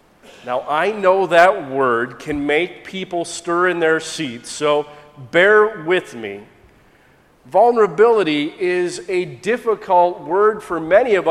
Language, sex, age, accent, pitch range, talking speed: English, male, 40-59, American, 155-210 Hz, 125 wpm